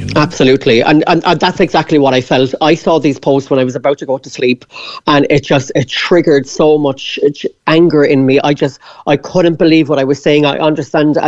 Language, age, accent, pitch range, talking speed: English, 40-59, Irish, 135-170 Hz, 225 wpm